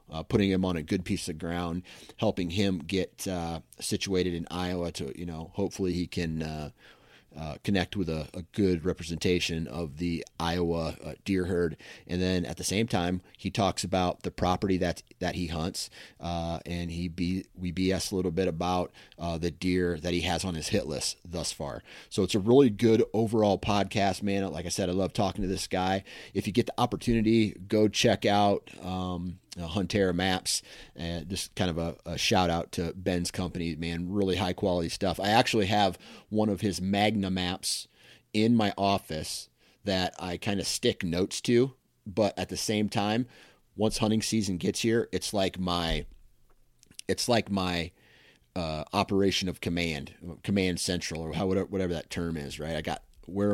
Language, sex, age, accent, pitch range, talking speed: English, male, 30-49, American, 85-100 Hz, 190 wpm